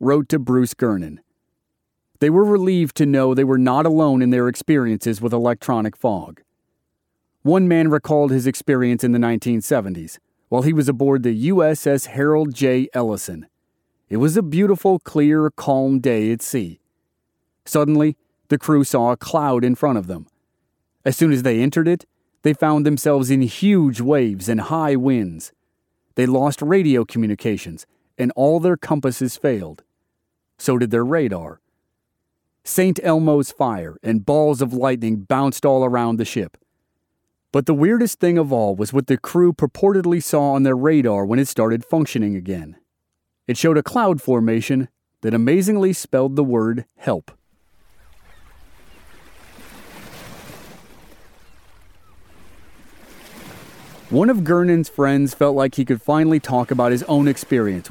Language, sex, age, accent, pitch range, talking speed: English, male, 30-49, American, 115-150 Hz, 145 wpm